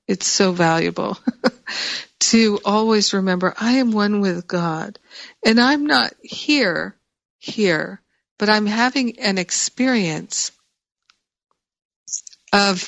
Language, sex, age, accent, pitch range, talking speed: English, female, 50-69, American, 175-210 Hz, 100 wpm